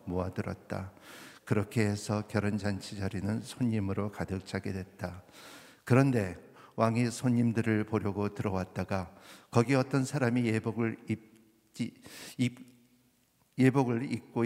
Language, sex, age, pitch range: Korean, male, 50-69, 100-120 Hz